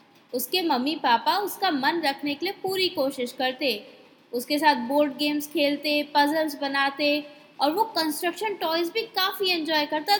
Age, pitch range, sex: 20-39, 280-400 Hz, female